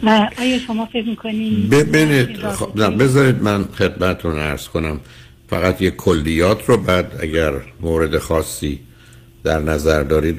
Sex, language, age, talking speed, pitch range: male, Persian, 60-79, 105 wpm, 80-105 Hz